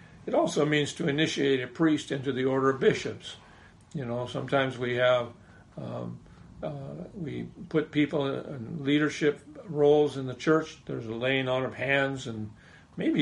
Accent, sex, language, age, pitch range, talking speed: American, male, English, 50-69, 125-155 Hz, 170 wpm